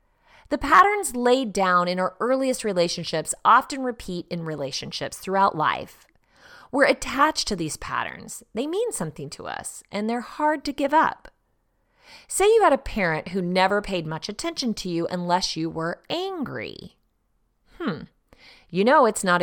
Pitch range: 175-265 Hz